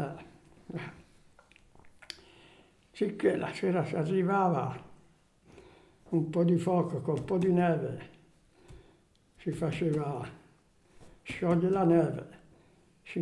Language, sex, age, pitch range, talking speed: Italian, male, 60-79, 155-175 Hz, 105 wpm